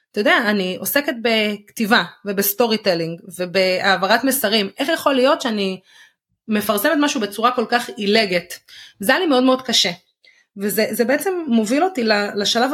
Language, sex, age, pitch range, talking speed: Hebrew, female, 30-49, 195-245 Hz, 135 wpm